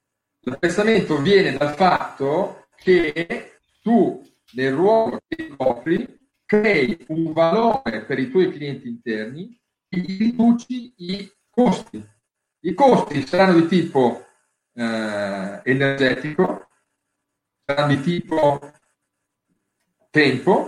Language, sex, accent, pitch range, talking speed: Italian, male, native, 145-200 Hz, 95 wpm